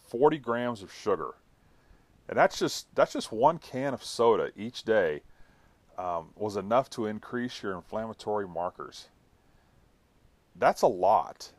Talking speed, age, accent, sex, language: 135 wpm, 30-49, American, male, English